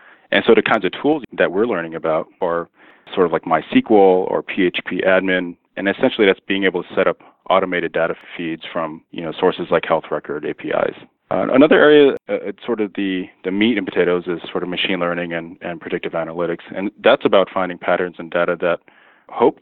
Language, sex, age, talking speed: English, male, 30-49, 205 wpm